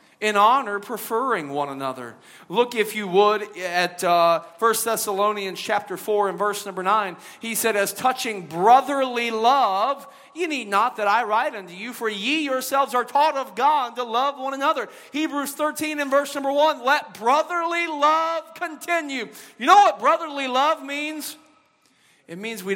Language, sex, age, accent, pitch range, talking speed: English, male, 40-59, American, 170-275 Hz, 165 wpm